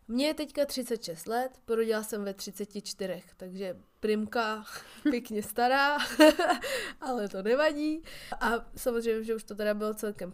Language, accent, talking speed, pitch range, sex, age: Czech, native, 140 wpm, 205-245 Hz, female, 20-39